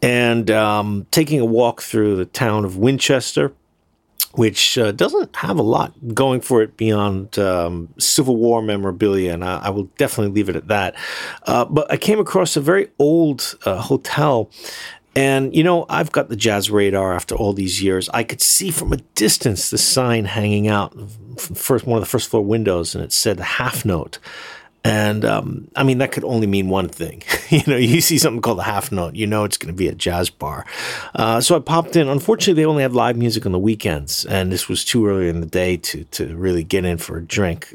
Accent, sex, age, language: American, male, 50-69, English